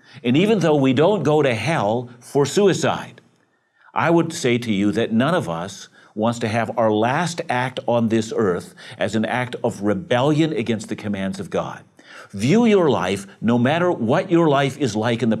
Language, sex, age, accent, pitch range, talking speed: English, male, 60-79, American, 110-145 Hz, 195 wpm